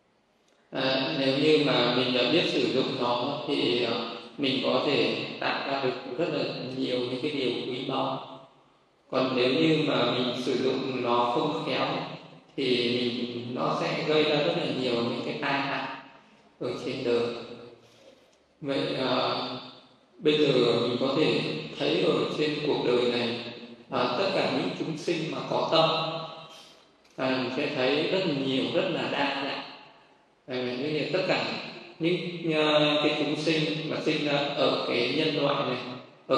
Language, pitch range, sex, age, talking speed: Vietnamese, 125-155 Hz, male, 20-39, 160 wpm